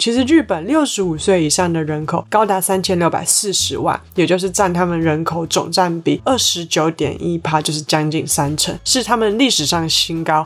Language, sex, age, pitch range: Chinese, female, 20-39, 160-195 Hz